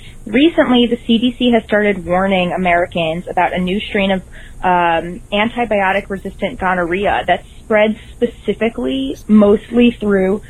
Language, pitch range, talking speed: English, 185-230 Hz, 120 wpm